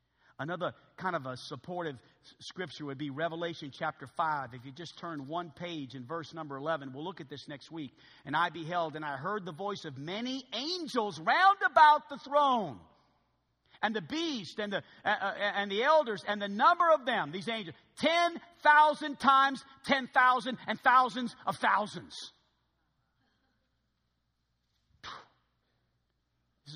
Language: English